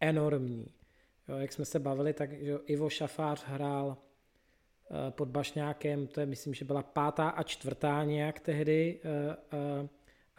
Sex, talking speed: male, 150 wpm